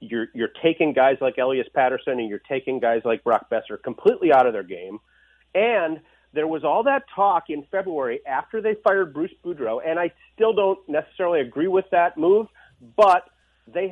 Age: 40-59